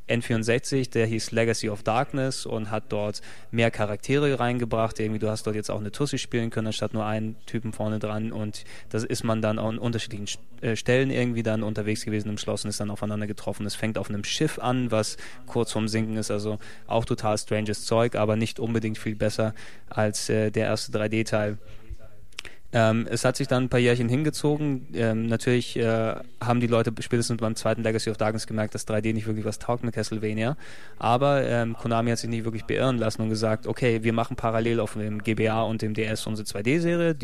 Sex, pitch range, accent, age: male, 110-120 Hz, German, 20-39